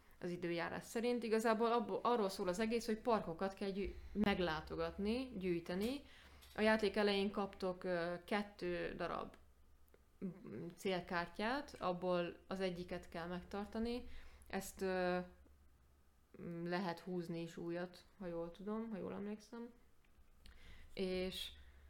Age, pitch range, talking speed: 20-39, 175-210 Hz, 100 wpm